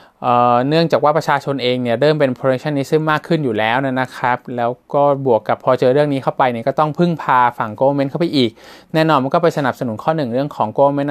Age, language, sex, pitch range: 20-39, Thai, male, 125-150 Hz